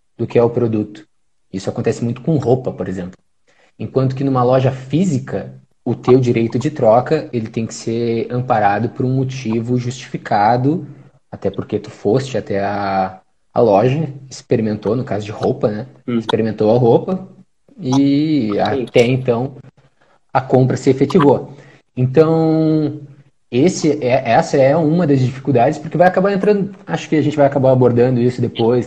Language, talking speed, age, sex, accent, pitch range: Portuguese, 160 wpm, 20-39, male, Brazilian, 110-140 Hz